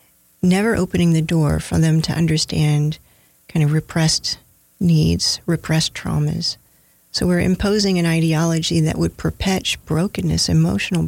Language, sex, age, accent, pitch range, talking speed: English, female, 40-59, American, 150-175 Hz, 130 wpm